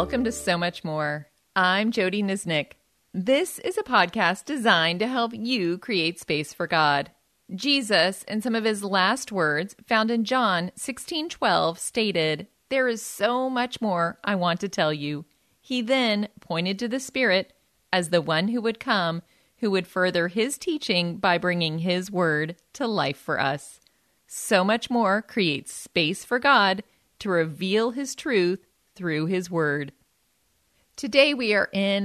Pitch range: 170-230 Hz